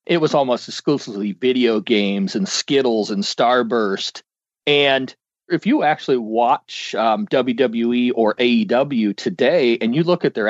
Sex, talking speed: male, 145 wpm